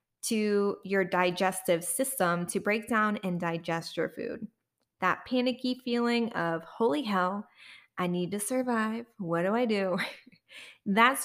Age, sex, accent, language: 20-39, female, American, English